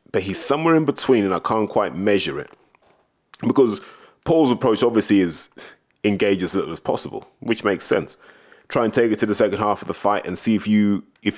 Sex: male